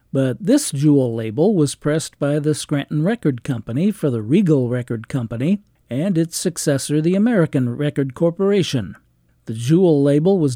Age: 50-69